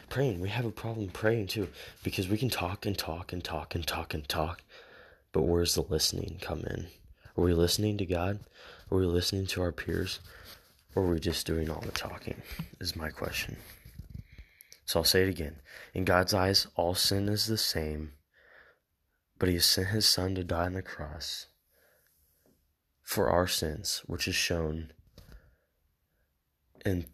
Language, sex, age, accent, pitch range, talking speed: English, male, 20-39, American, 80-95 Hz, 170 wpm